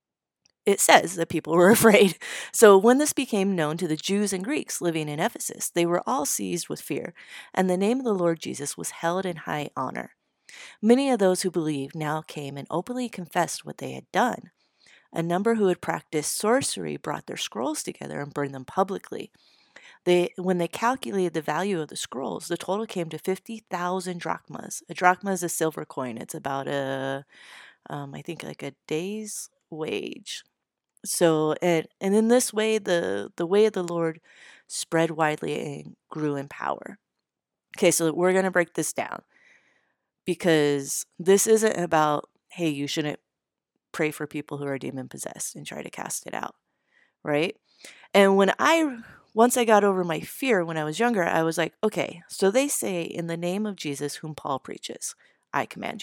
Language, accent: English, American